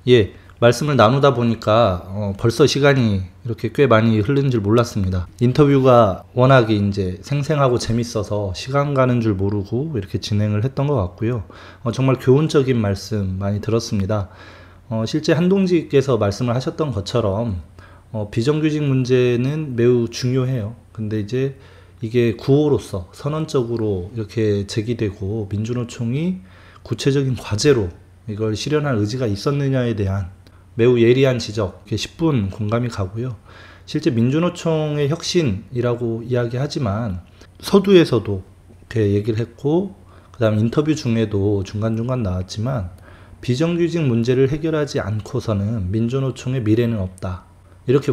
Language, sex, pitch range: Korean, male, 100-135 Hz